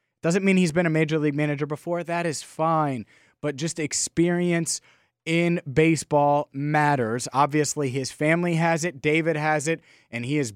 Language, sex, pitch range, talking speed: English, male, 125-165 Hz, 165 wpm